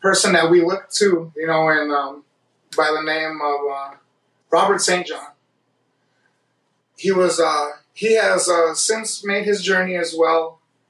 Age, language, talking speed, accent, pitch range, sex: 30-49, English, 160 wpm, American, 155-180 Hz, male